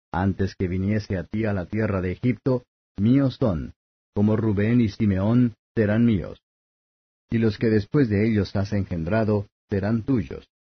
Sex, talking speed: male, 155 wpm